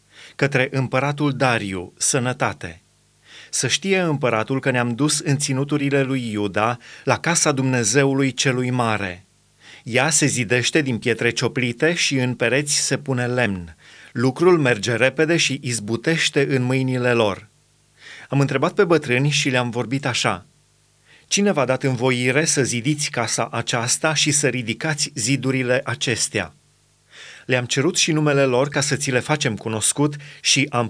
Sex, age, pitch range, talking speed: male, 30-49, 125-150 Hz, 140 wpm